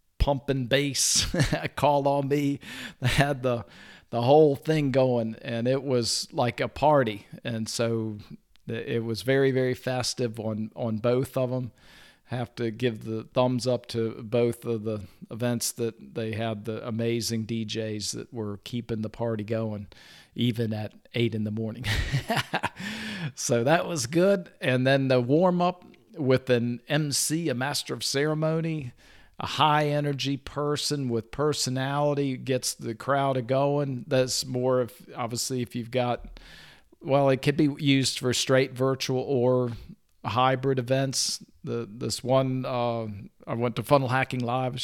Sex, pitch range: male, 115-135 Hz